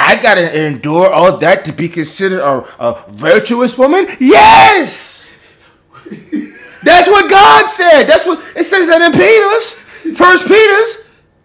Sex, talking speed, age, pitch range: male, 140 wpm, 30-49, 195-290 Hz